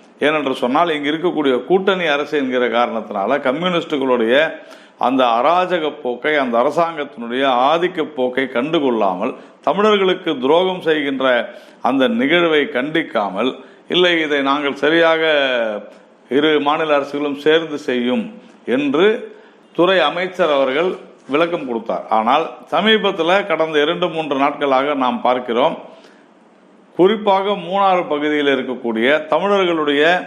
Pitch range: 140-185 Hz